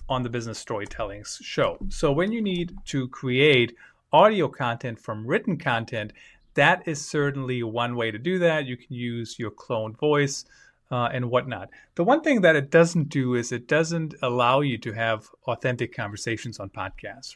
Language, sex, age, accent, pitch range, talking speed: English, male, 30-49, American, 115-145 Hz, 175 wpm